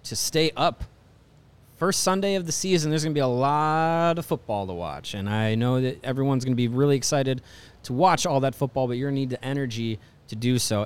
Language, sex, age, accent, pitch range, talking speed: English, male, 30-49, American, 115-155 Hz, 220 wpm